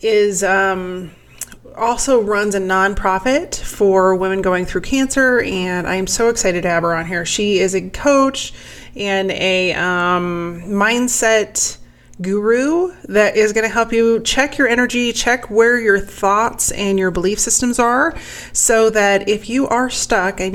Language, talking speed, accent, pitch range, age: English, 160 wpm, American, 190-230 Hz, 30-49